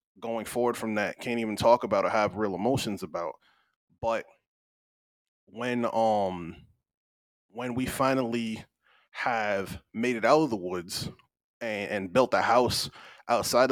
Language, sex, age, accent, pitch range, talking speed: English, male, 20-39, American, 105-130 Hz, 140 wpm